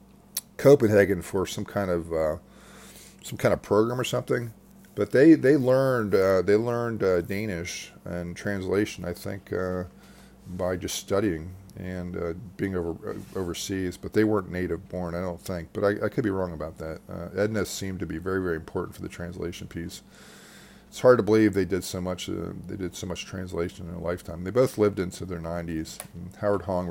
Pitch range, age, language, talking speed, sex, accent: 85-105 Hz, 40-59, English, 195 wpm, male, American